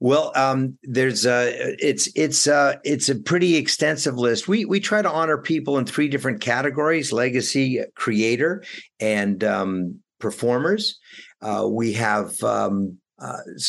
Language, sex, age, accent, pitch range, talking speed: English, male, 50-69, American, 110-145 Hz, 140 wpm